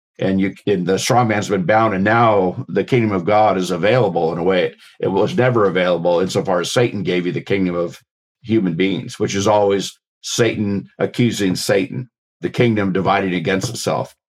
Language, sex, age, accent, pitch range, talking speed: English, male, 50-69, American, 95-110 Hz, 190 wpm